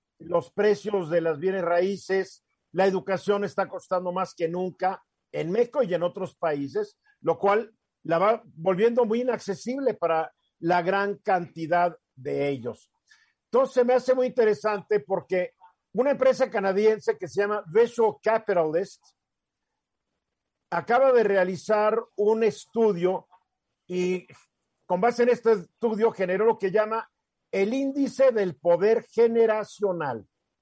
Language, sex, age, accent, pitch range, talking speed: Spanish, male, 50-69, Mexican, 180-230 Hz, 130 wpm